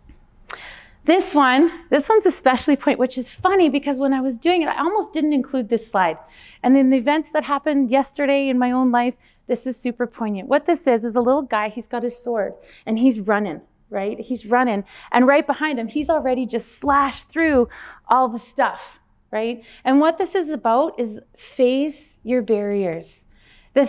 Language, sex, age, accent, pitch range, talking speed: English, female, 30-49, American, 235-295 Hz, 190 wpm